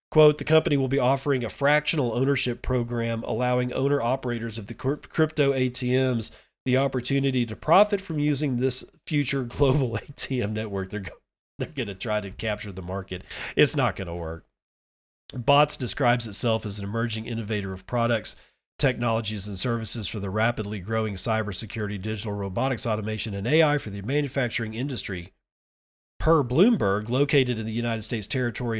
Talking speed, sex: 155 wpm, male